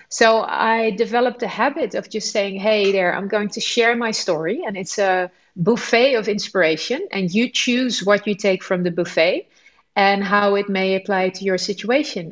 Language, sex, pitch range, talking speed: English, female, 180-220 Hz, 190 wpm